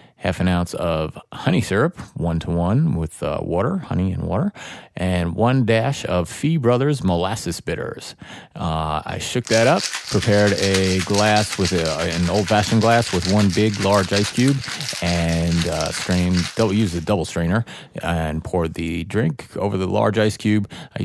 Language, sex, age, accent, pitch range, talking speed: English, male, 30-49, American, 80-105 Hz, 170 wpm